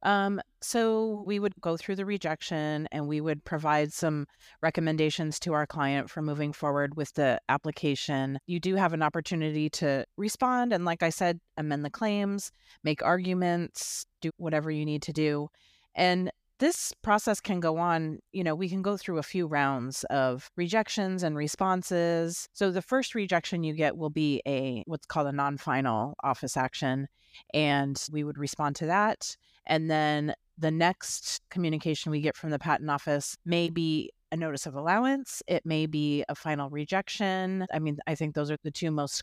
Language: English